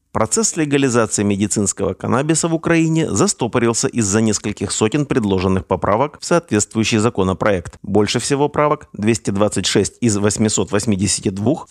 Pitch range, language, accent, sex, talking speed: 100-135 Hz, Russian, native, male, 110 wpm